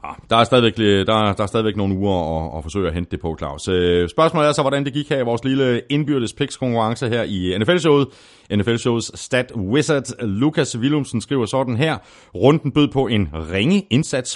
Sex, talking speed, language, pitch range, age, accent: male, 190 wpm, Danish, 95-135 Hz, 30-49, native